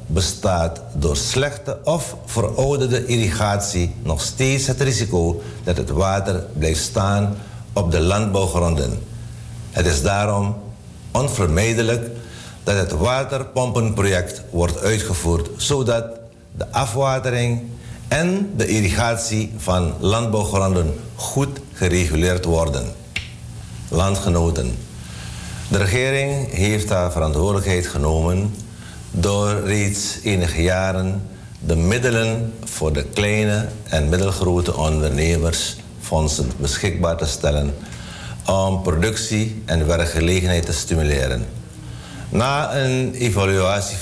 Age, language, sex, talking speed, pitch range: 50-69, Dutch, male, 95 wpm, 85-110 Hz